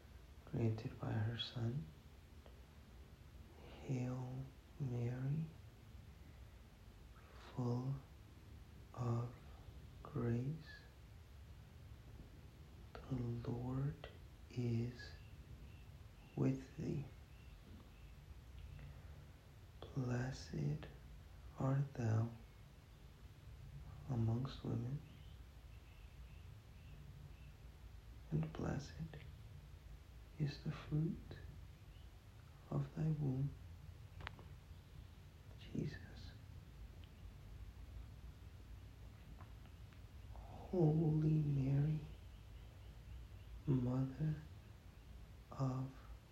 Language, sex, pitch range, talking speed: English, male, 85-125 Hz, 40 wpm